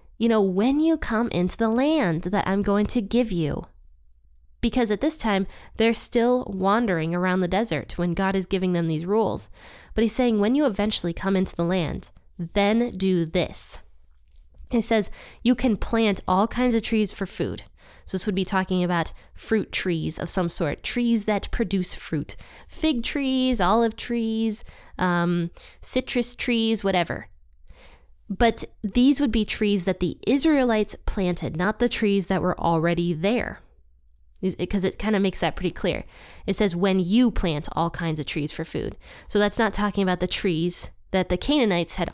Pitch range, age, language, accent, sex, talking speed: 170-225 Hz, 10-29, English, American, female, 175 wpm